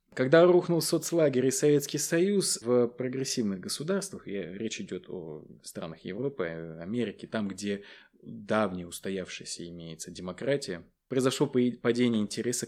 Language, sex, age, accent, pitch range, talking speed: Russian, male, 20-39, native, 100-135 Hz, 120 wpm